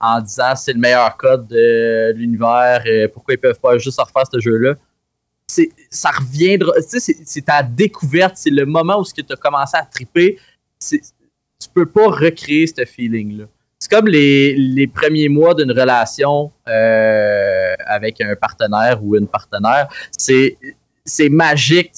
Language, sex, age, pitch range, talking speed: French, male, 20-39, 135-185 Hz, 165 wpm